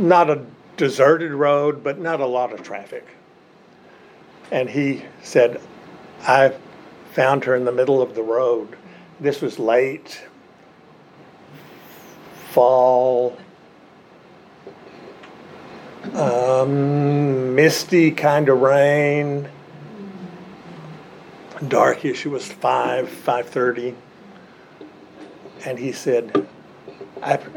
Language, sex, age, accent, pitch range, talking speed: English, male, 60-79, American, 125-175 Hz, 90 wpm